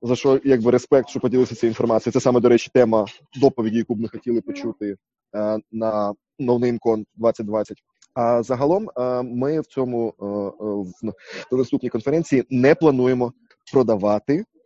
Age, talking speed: 20-39, 150 wpm